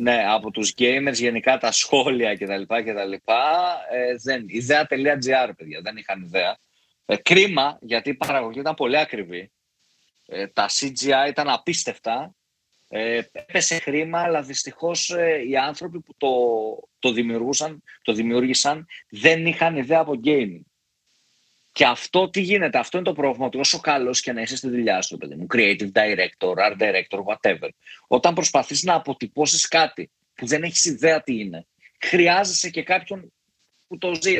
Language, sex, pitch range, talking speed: Greek, male, 115-155 Hz, 160 wpm